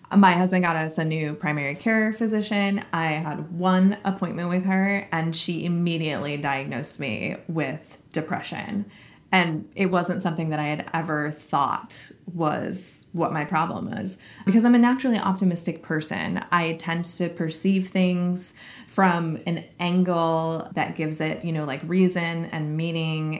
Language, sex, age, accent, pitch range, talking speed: English, female, 20-39, American, 160-190 Hz, 150 wpm